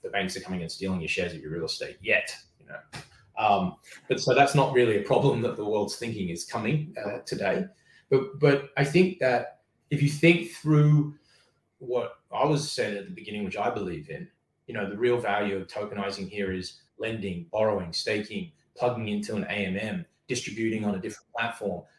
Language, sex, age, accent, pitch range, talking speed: English, male, 20-39, Australian, 100-150 Hz, 195 wpm